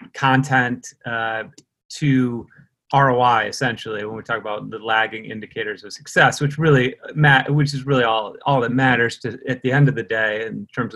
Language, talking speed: English, 180 wpm